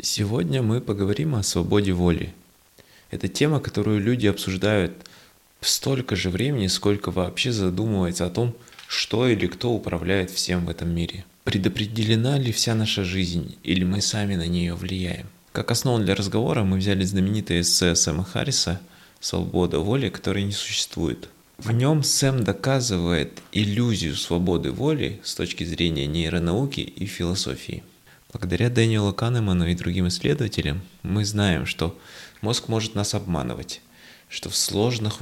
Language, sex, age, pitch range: Russian, male, 20-39, 90-115 Hz